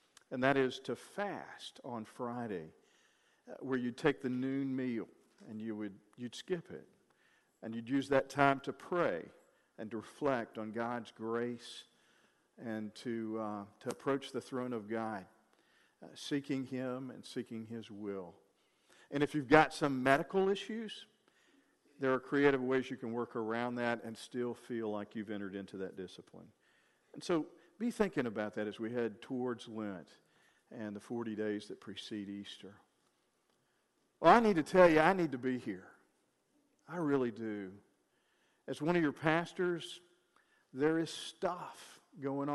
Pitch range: 115-150 Hz